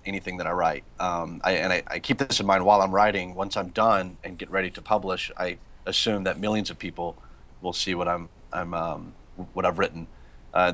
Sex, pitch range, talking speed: male, 85-95 Hz, 225 wpm